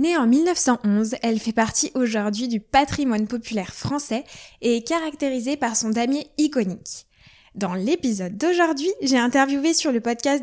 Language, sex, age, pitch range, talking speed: French, female, 10-29, 230-300 Hz, 150 wpm